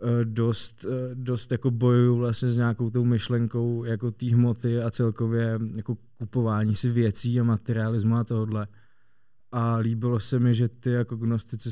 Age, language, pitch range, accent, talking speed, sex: 20-39, Czech, 110-120 Hz, native, 150 wpm, male